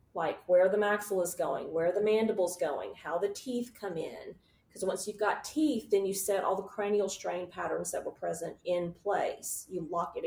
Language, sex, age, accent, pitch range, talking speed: English, female, 40-59, American, 170-205 Hz, 215 wpm